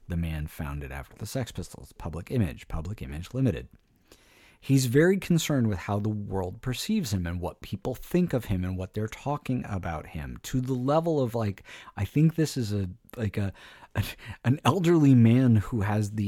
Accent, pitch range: American, 95-125 Hz